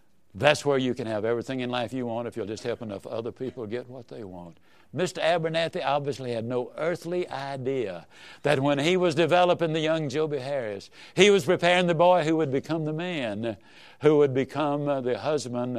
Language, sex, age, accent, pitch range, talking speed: English, male, 60-79, American, 120-175 Hz, 200 wpm